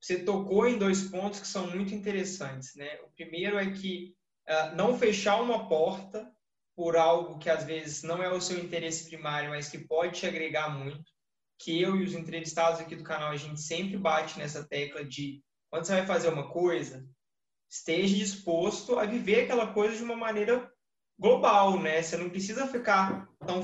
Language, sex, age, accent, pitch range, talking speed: Portuguese, male, 20-39, Brazilian, 165-205 Hz, 185 wpm